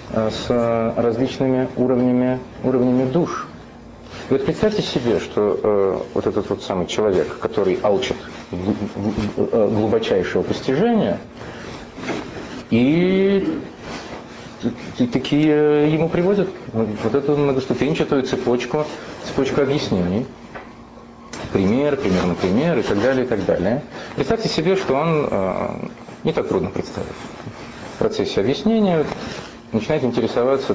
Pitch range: 110-150 Hz